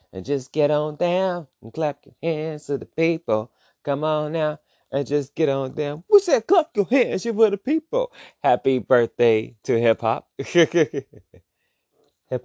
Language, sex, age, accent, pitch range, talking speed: English, male, 30-49, American, 105-160 Hz, 170 wpm